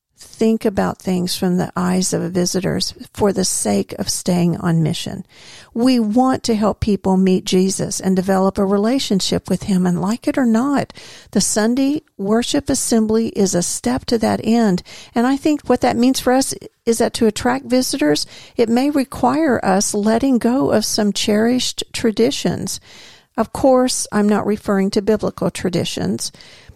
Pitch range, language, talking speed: 195-250 Hz, English, 165 wpm